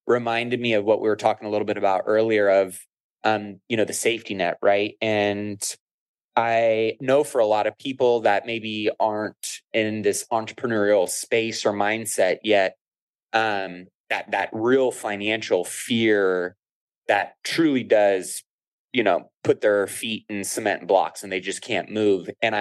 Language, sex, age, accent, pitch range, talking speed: English, male, 20-39, American, 100-120 Hz, 160 wpm